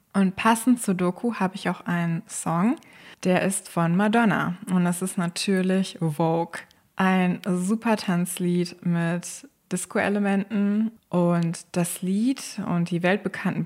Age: 20-39